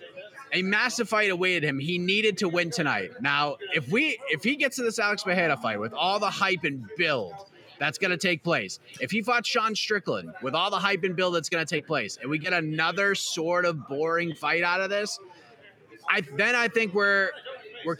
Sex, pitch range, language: male, 155-205 Hz, English